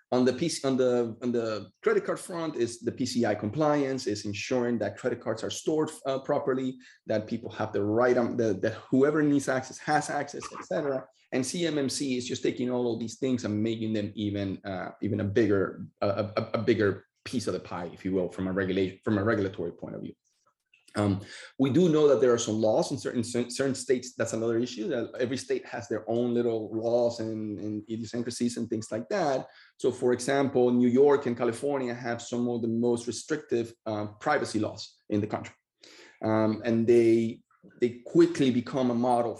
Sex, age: male, 30-49